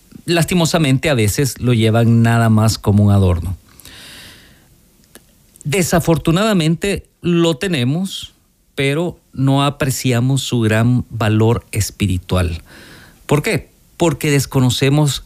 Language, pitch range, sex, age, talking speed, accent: Spanish, 105-135 Hz, male, 50-69, 95 wpm, Mexican